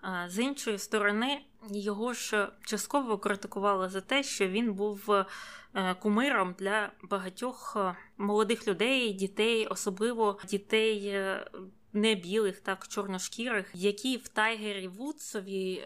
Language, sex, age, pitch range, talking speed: Ukrainian, female, 20-39, 200-235 Hz, 105 wpm